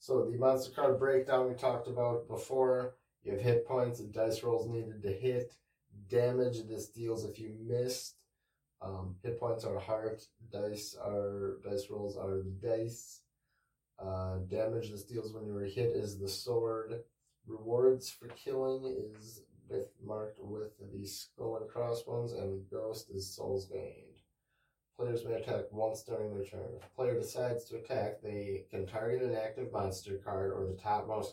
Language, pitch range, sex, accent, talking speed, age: English, 100-120 Hz, male, American, 165 wpm, 30-49